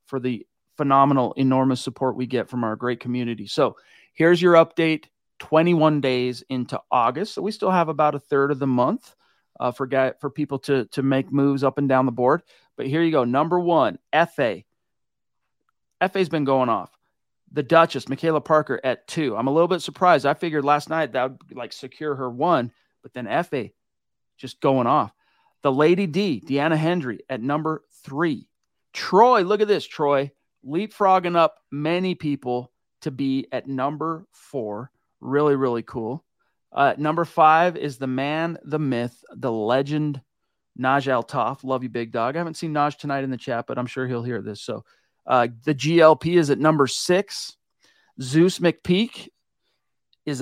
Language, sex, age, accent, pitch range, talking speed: English, male, 40-59, American, 130-160 Hz, 175 wpm